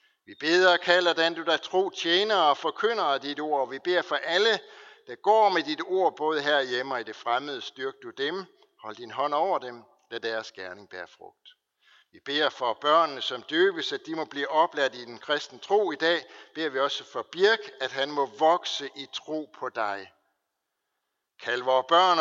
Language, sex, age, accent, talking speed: Danish, male, 60-79, native, 210 wpm